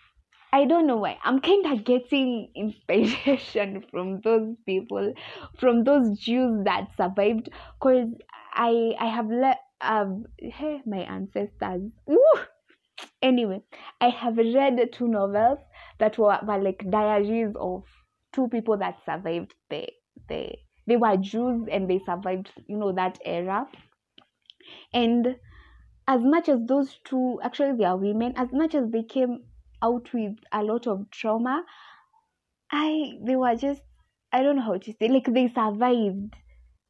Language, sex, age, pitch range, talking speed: English, female, 20-39, 210-270 Hz, 145 wpm